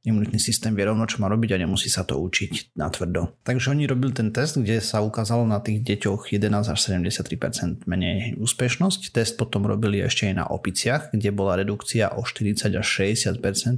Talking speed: 190 wpm